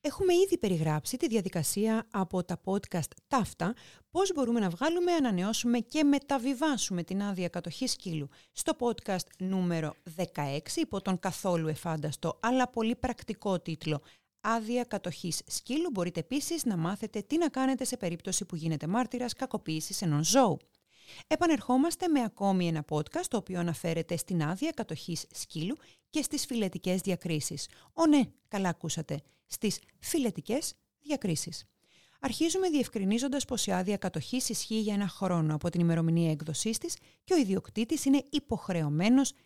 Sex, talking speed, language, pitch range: female, 140 wpm, Greek, 170-260 Hz